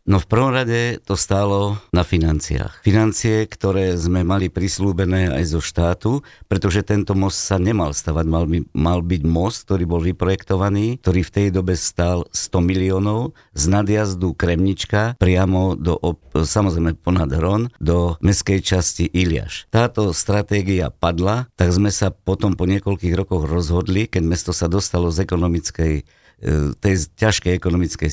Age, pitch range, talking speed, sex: 50-69, 85-105 Hz, 145 wpm, male